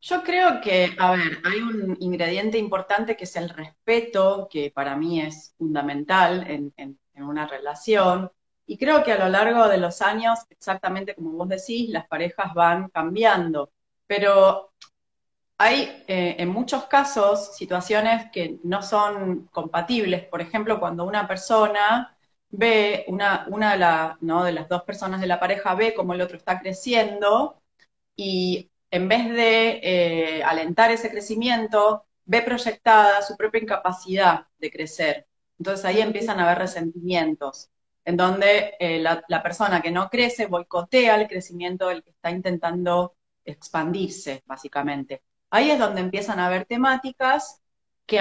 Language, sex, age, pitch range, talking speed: Spanish, female, 30-49, 170-215 Hz, 150 wpm